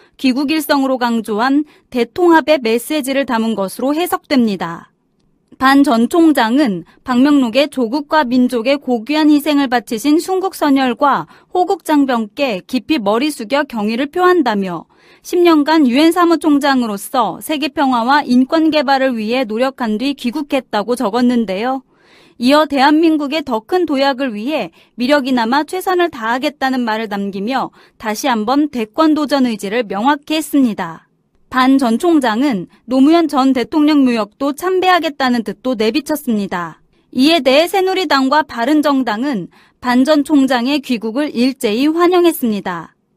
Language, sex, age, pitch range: Korean, female, 30-49, 235-305 Hz